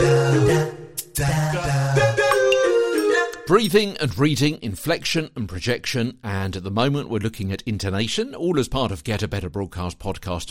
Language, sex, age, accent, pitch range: English, male, 50-69, British, 90-140 Hz